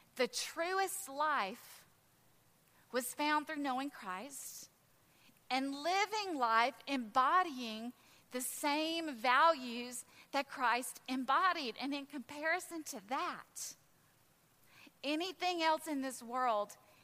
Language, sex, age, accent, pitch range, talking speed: English, female, 30-49, American, 250-320 Hz, 100 wpm